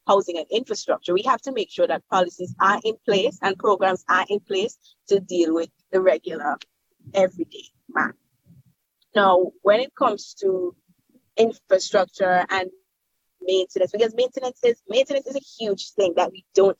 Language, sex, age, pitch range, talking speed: English, female, 20-39, 185-250 Hz, 155 wpm